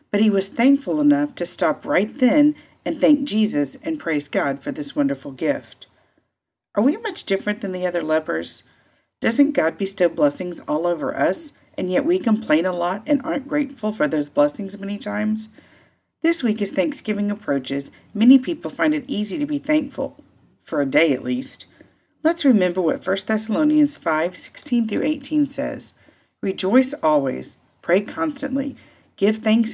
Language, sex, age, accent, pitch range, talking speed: English, female, 40-59, American, 185-290 Hz, 165 wpm